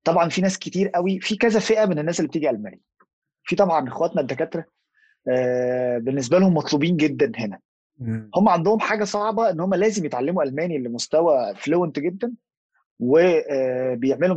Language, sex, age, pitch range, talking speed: Arabic, male, 20-39, 145-205 Hz, 145 wpm